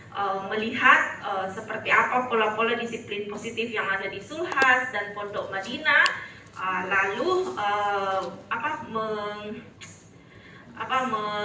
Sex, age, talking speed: female, 20-39, 110 wpm